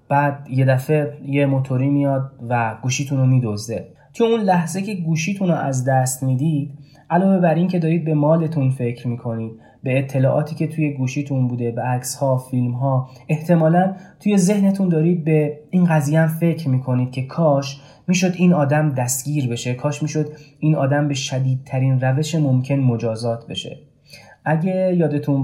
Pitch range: 130-160 Hz